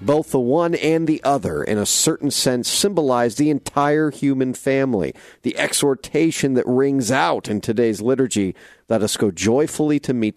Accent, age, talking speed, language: American, 50-69, 170 wpm, English